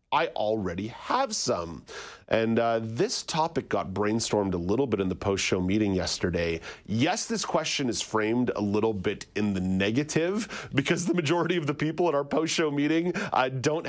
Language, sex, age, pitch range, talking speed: English, male, 30-49, 120-165 Hz, 175 wpm